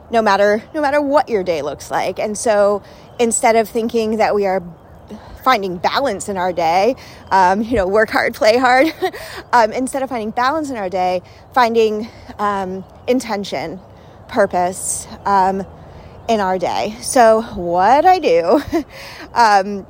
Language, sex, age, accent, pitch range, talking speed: English, female, 30-49, American, 200-250 Hz, 150 wpm